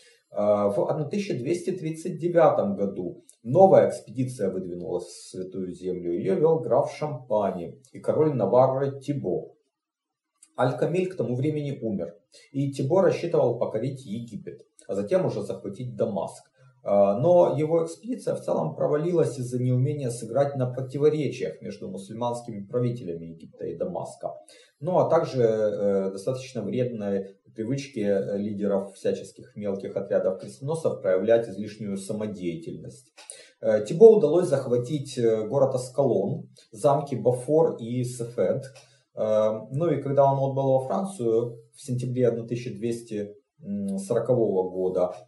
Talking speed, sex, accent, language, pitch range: 115 wpm, male, native, Russian, 105-150 Hz